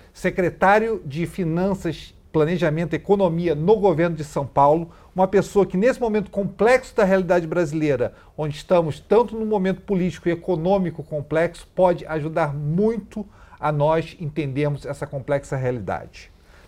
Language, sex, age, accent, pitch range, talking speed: Portuguese, male, 40-59, Brazilian, 150-195 Hz, 135 wpm